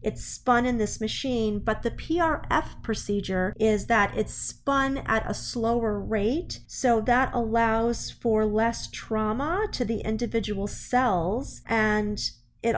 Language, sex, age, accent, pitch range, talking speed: English, female, 30-49, American, 200-230 Hz, 135 wpm